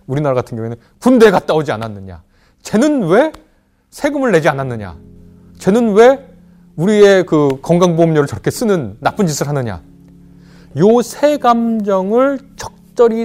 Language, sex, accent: Korean, male, native